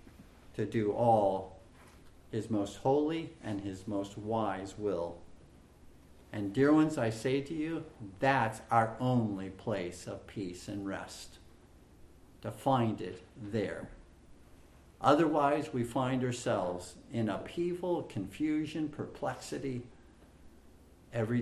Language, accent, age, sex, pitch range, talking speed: English, American, 50-69, male, 95-135 Hz, 110 wpm